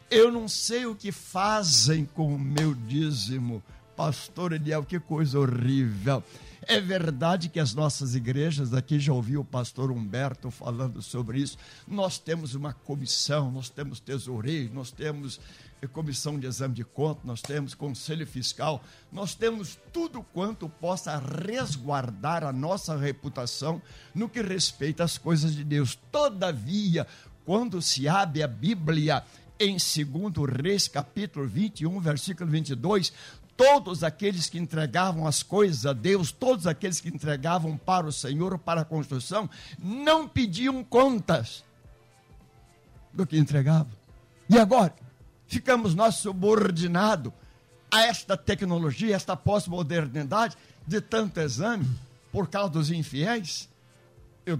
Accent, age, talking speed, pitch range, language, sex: Brazilian, 60-79, 130 wpm, 135-185 Hz, Portuguese, male